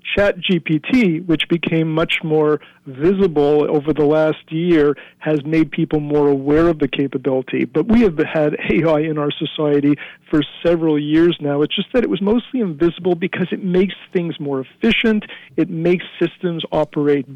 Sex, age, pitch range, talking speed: male, 50-69, 150-180 Hz, 165 wpm